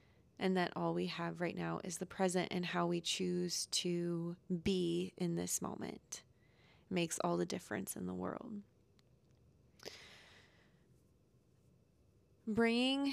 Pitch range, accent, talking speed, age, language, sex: 180-200 Hz, American, 125 wpm, 20-39, English, female